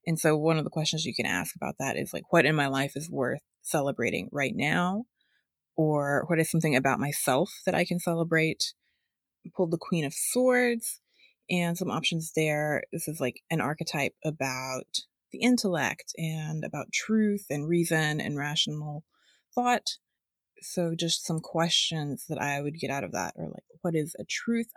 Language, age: English, 20-39